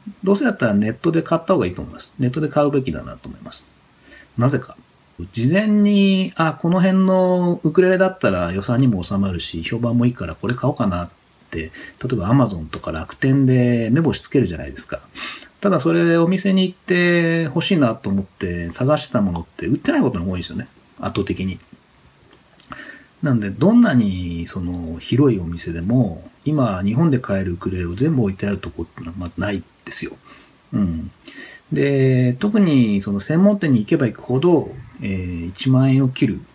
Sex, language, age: male, Japanese, 40-59